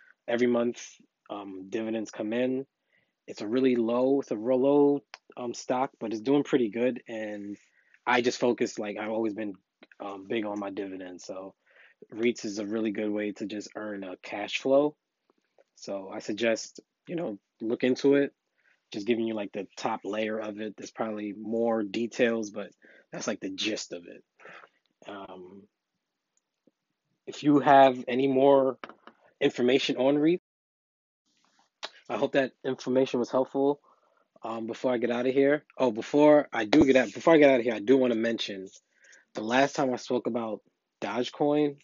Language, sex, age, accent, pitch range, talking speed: English, male, 20-39, American, 105-130 Hz, 175 wpm